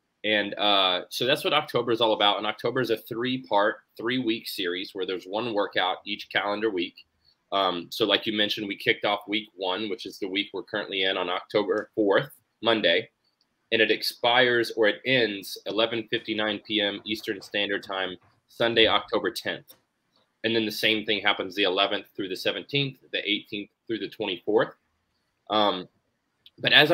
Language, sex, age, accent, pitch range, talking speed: English, male, 20-39, American, 100-115 Hz, 170 wpm